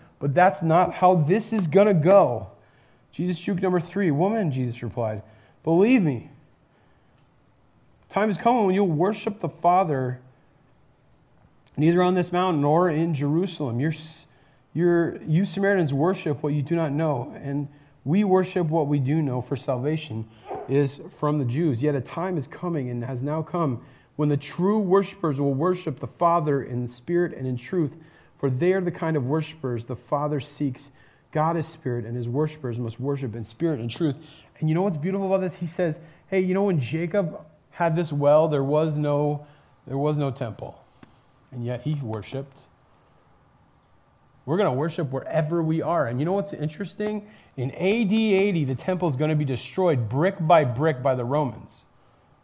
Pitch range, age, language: 135-175 Hz, 30-49, English